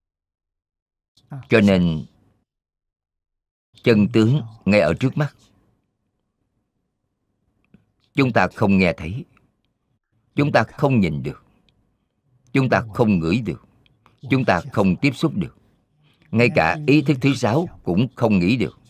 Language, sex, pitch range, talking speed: Vietnamese, male, 95-125 Hz, 125 wpm